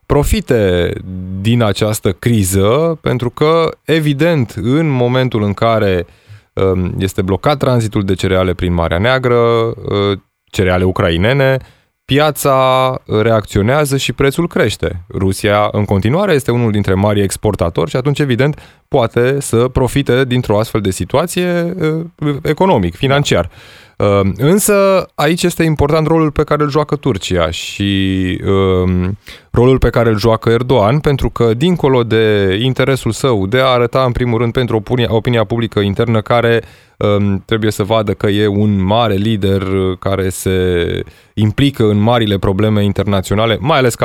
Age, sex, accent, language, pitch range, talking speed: 20-39, male, native, Romanian, 100-145 Hz, 135 wpm